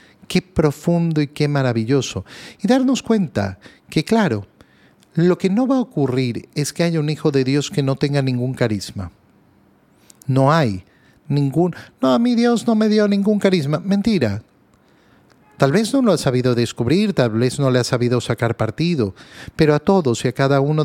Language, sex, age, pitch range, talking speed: Spanish, male, 40-59, 115-170 Hz, 180 wpm